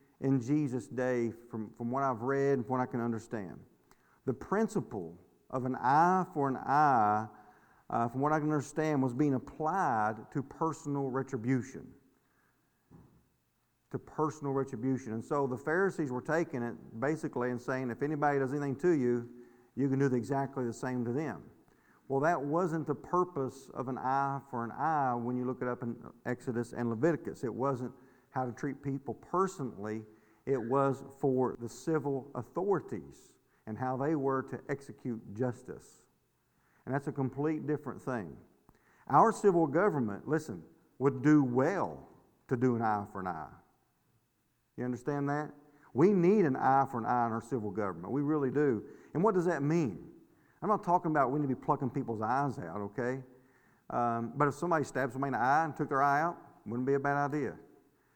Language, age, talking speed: English, 50-69, 180 wpm